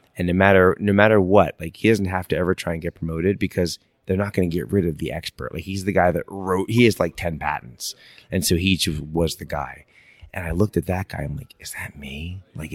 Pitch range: 85-105 Hz